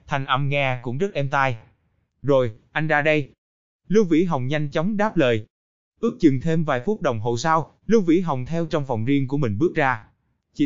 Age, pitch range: 20-39, 125-170 Hz